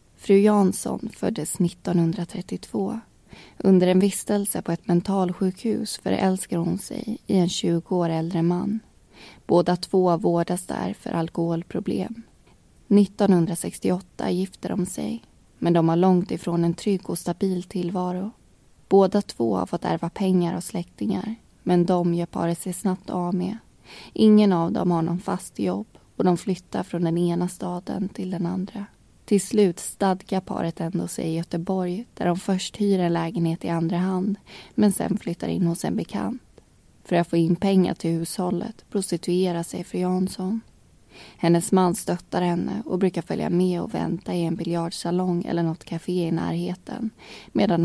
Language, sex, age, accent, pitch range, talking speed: Swedish, female, 20-39, native, 170-195 Hz, 155 wpm